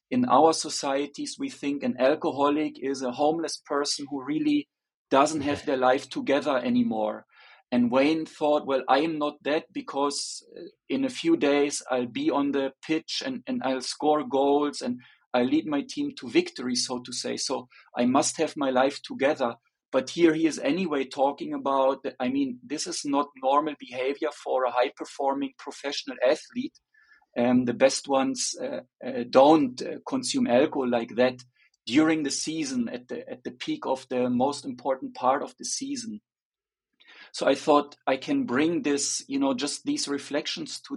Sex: male